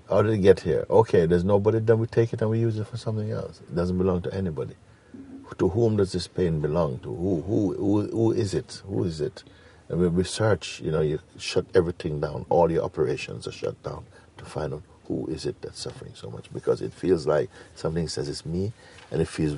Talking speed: 235 wpm